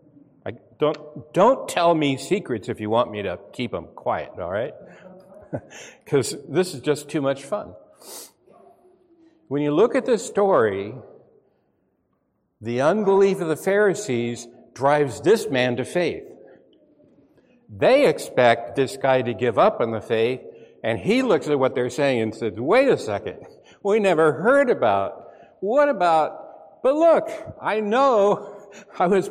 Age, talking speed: 60-79, 145 wpm